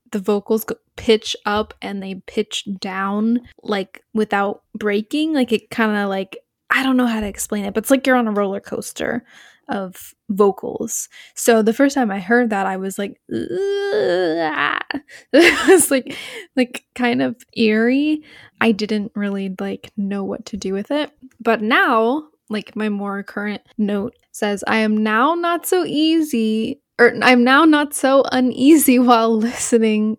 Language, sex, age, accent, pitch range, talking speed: English, female, 10-29, American, 200-250 Hz, 160 wpm